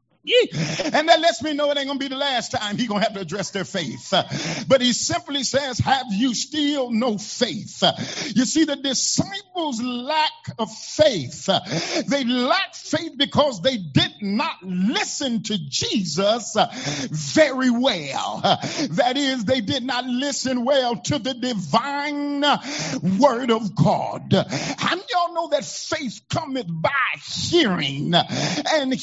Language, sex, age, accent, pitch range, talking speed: English, male, 50-69, American, 225-300 Hz, 145 wpm